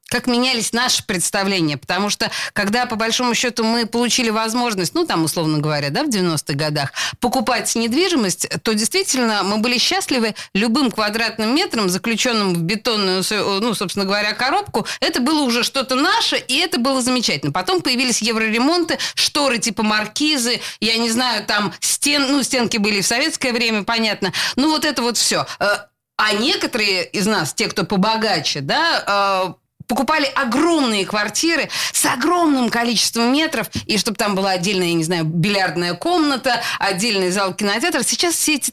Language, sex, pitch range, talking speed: Russian, female, 195-255 Hz, 155 wpm